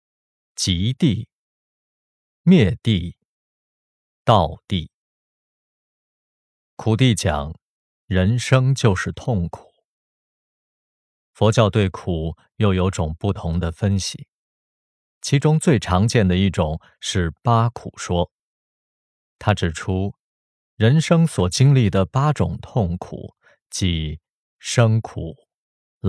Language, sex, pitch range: Chinese, male, 90-115 Hz